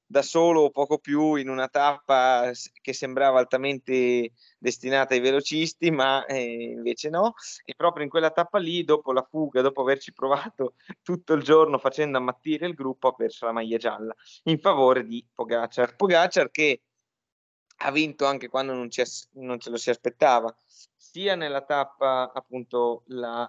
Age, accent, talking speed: 20-39, native, 160 wpm